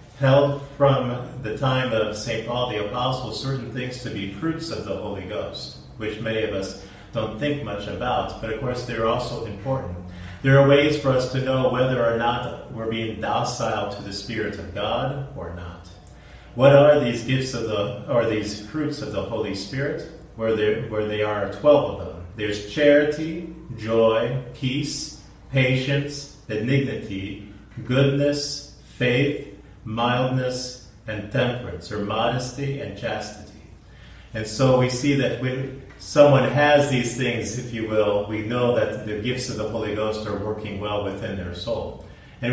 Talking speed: 165 wpm